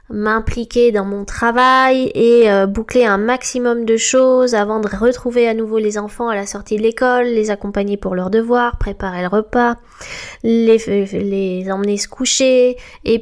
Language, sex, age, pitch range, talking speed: French, female, 20-39, 210-250 Hz, 170 wpm